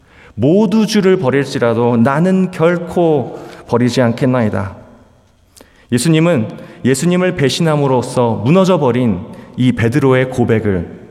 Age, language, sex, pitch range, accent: 30-49, Korean, male, 110-160 Hz, native